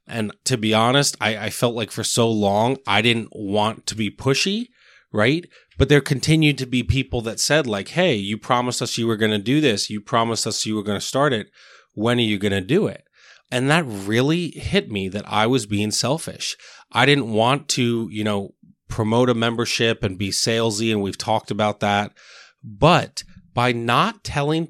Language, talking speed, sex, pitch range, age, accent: English, 205 wpm, male, 105-135 Hz, 20-39, American